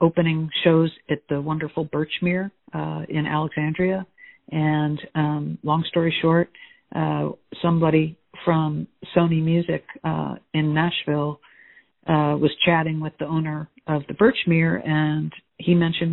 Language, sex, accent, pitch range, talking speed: English, female, American, 150-170 Hz, 125 wpm